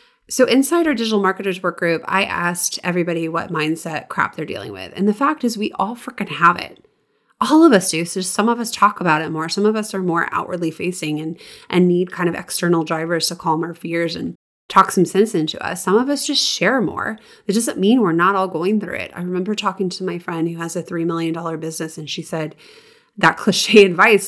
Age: 20-39